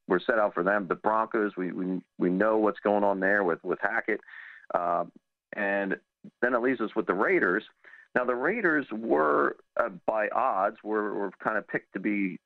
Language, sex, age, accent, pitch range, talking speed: English, male, 50-69, American, 100-125 Hz, 195 wpm